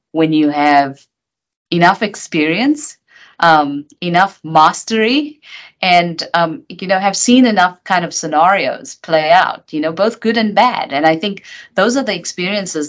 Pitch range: 145-210 Hz